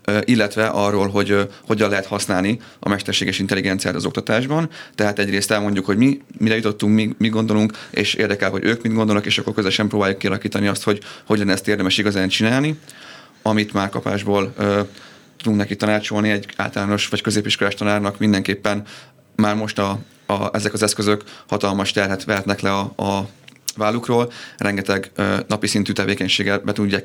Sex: male